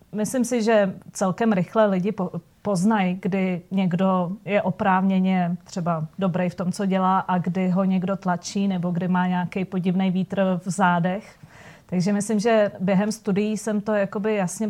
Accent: native